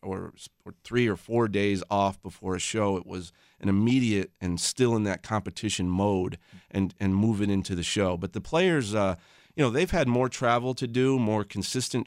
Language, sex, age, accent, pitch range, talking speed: English, male, 30-49, American, 95-115 Hz, 195 wpm